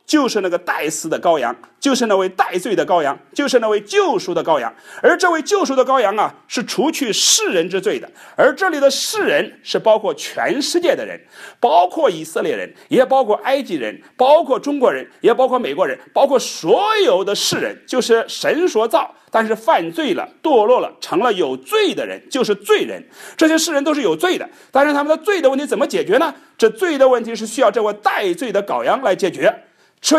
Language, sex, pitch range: English, male, 235-390 Hz